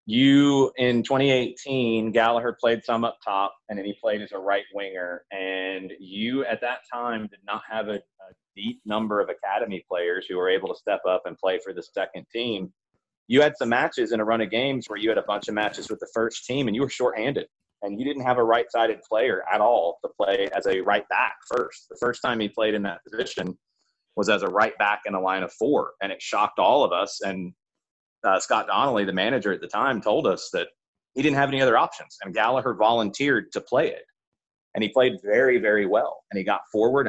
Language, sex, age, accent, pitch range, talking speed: English, male, 30-49, American, 100-135 Hz, 230 wpm